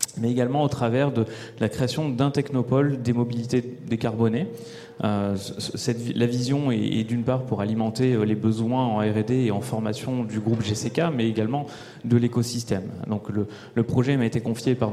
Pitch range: 110-130 Hz